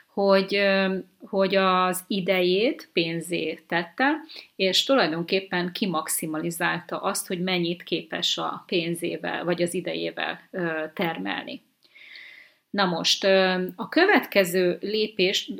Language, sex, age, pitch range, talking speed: Hungarian, female, 30-49, 170-190 Hz, 90 wpm